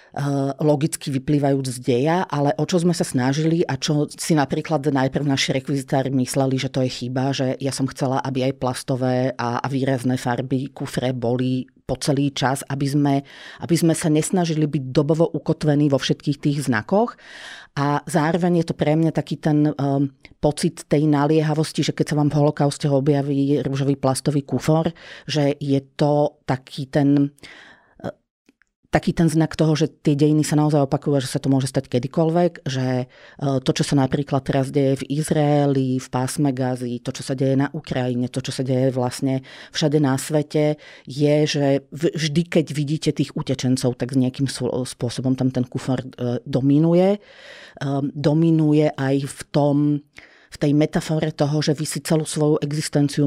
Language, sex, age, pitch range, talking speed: Slovak, female, 40-59, 130-155 Hz, 165 wpm